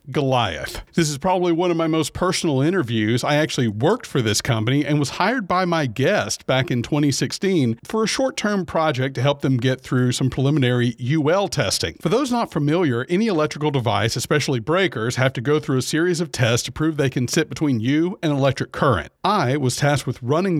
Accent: American